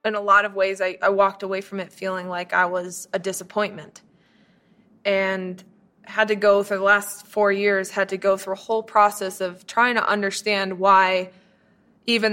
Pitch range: 190-210 Hz